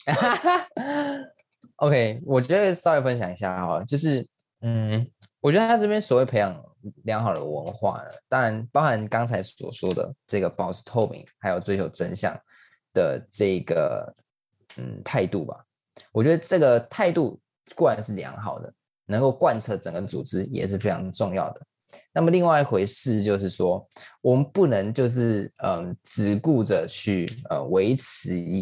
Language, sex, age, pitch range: Chinese, male, 20-39, 100-135 Hz